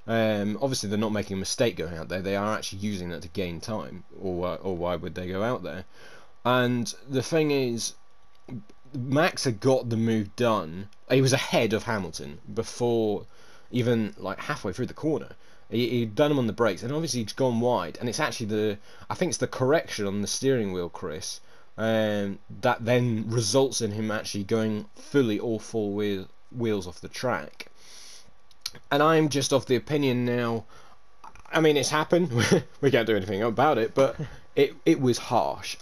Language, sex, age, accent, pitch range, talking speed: English, male, 20-39, British, 105-130 Hz, 185 wpm